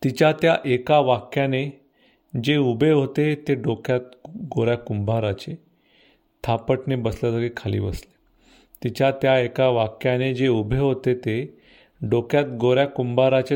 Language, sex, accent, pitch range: Marathi, male, native, 120-145 Hz